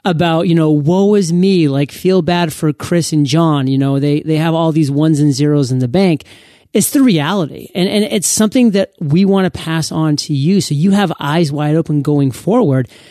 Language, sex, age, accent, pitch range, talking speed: English, male, 30-49, American, 145-185 Hz, 225 wpm